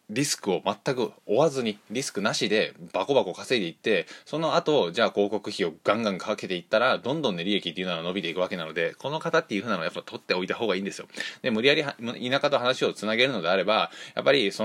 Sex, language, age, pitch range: male, Japanese, 20-39, 100-145 Hz